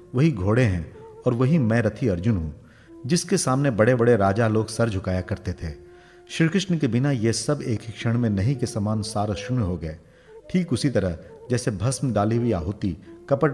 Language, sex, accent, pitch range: Hindi, male, native, 100-135 Hz